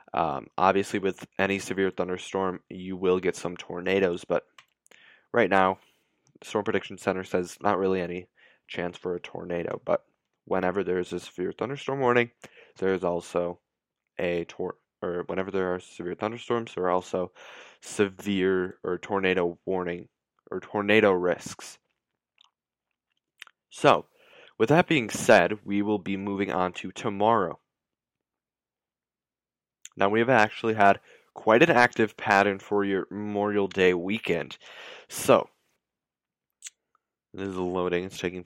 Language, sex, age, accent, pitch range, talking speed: English, male, 20-39, American, 90-100 Hz, 130 wpm